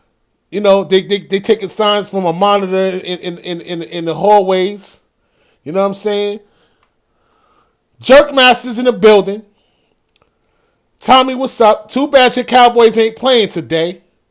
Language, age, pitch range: English, 30-49, 180-245 Hz